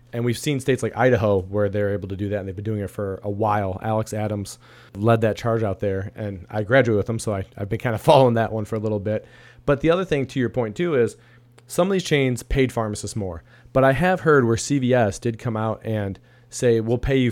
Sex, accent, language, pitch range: male, American, English, 110-130 Hz